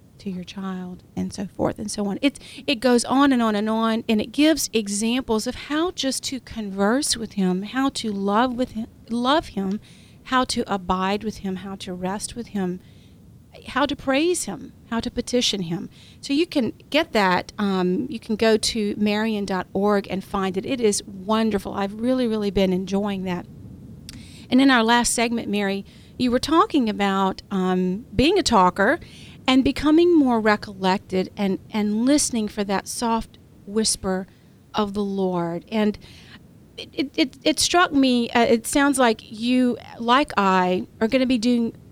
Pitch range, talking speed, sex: 195-255 Hz, 175 wpm, female